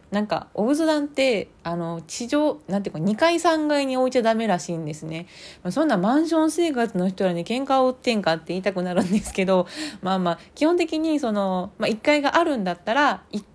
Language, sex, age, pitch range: Japanese, female, 20-39, 185-245 Hz